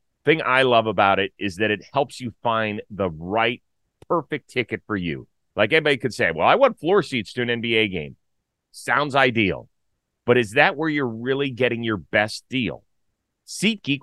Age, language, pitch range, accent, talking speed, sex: 30-49, English, 105-135 Hz, American, 185 wpm, male